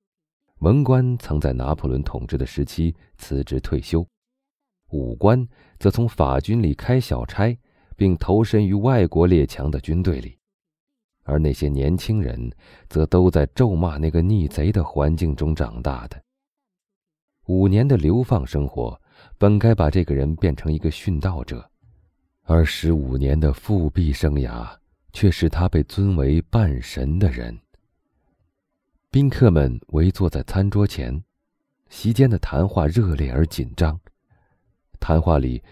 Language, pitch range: Chinese, 75-105 Hz